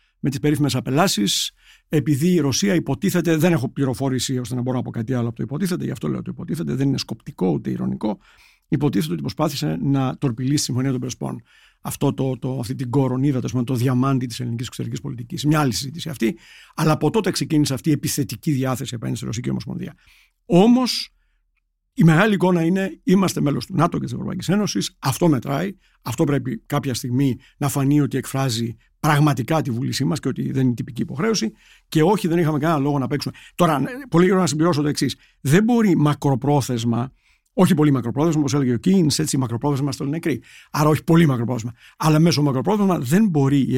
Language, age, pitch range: Greek, 60-79, 130-165 Hz